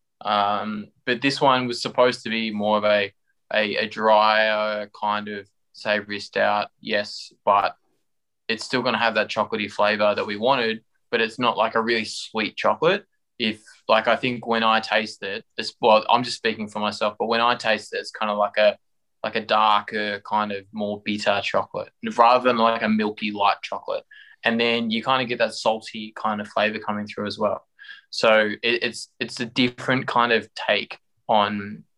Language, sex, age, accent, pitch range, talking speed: English, male, 20-39, Australian, 105-115 Hz, 195 wpm